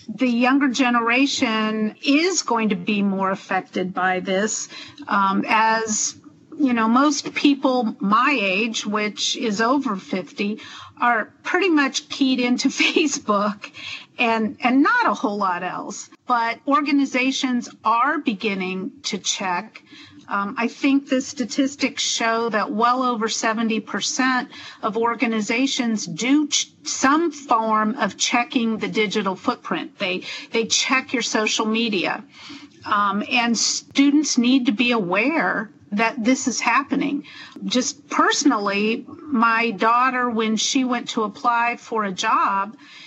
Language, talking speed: English, 130 wpm